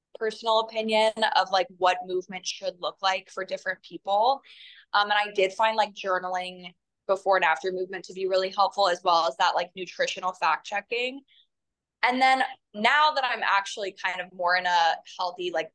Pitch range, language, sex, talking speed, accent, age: 185-225 Hz, English, female, 185 wpm, American, 20-39